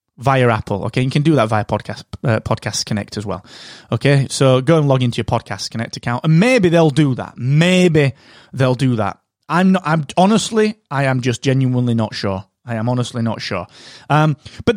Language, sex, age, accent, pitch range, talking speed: English, male, 20-39, British, 125-185 Hz, 205 wpm